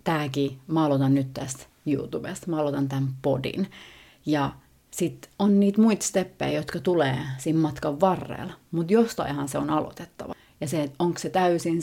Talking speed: 140 wpm